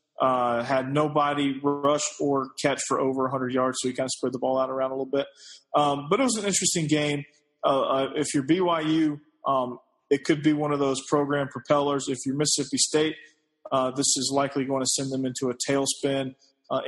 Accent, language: American, English